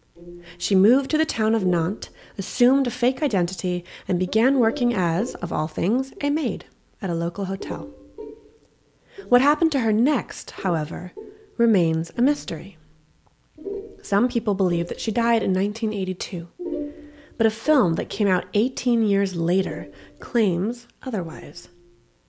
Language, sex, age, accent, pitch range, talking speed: English, female, 30-49, American, 175-240 Hz, 140 wpm